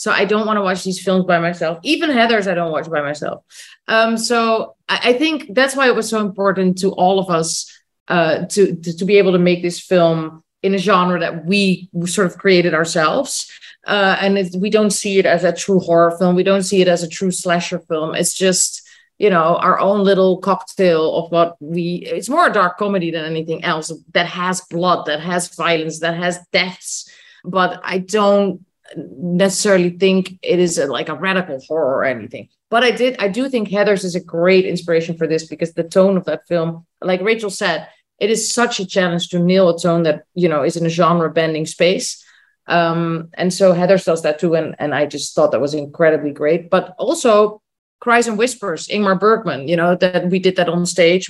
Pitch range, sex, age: 170-200 Hz, female, 30-49